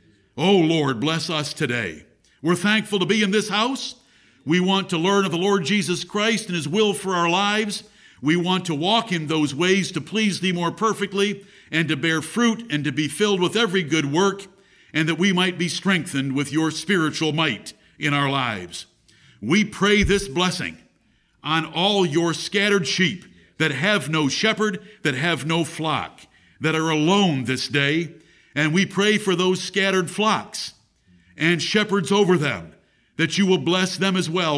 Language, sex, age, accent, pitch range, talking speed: English, male, 60-79, American, 160-210 Hz, 180 wpm